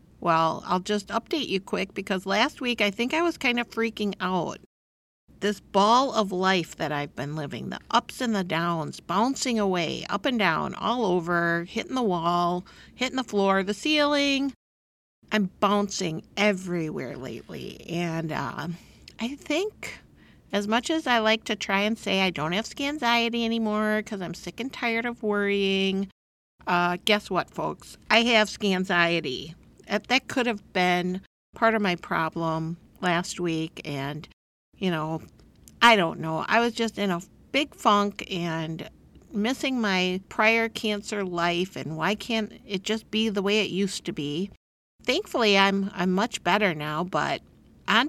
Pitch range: 175-230 Hz